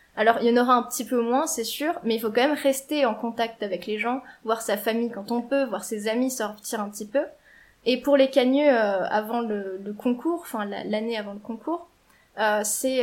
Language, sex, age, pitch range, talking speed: French, female, 20-39, 215-255 Hz, 240 wpm